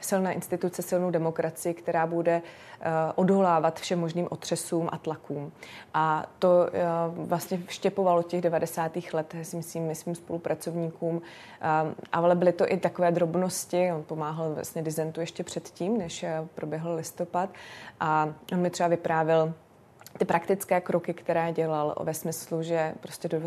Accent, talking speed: native, 145 wpm